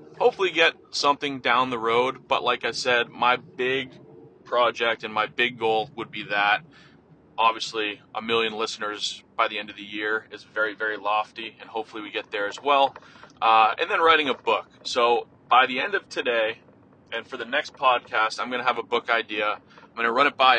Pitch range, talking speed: 110-135 Hz, 205 wpm